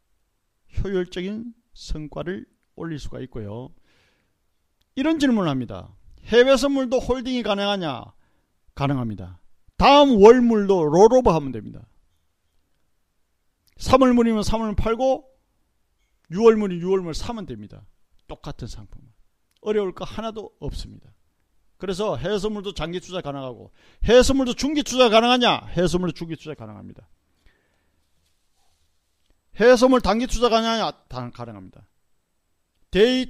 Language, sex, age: Korean, male, 40-59